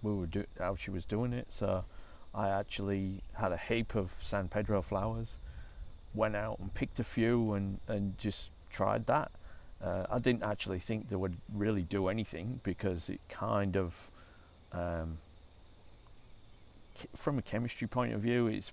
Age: 40-59